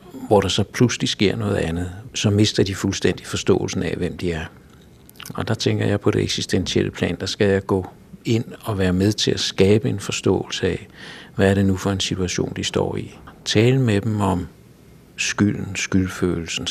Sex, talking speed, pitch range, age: male, 195 wpm, 90-105 Hz, 60-79